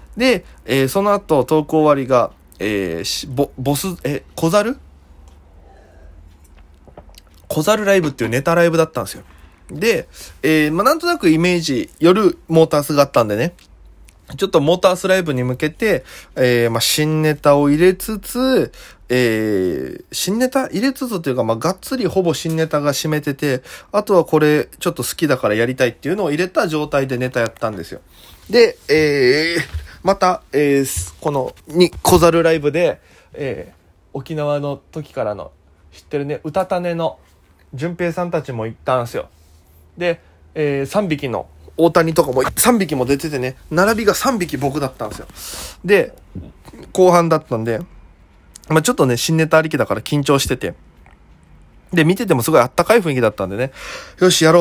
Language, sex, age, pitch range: Japanese, male, 20-39, 105-170 Hz